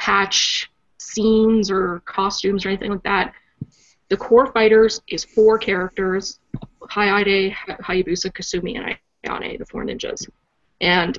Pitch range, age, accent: 190-220 Hz, 30-49, American